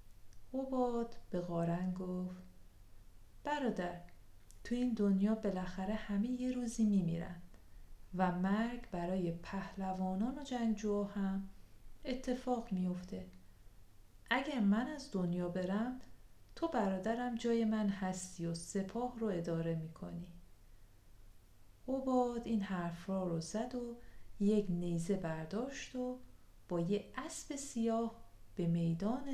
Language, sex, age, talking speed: Persian, female, 40-59, 110 wpm